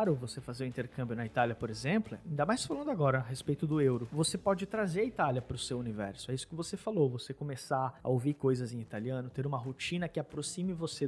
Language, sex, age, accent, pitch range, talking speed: Portuguese, male, 20-39, Brazilian, 130-180 Hz, 245 wpm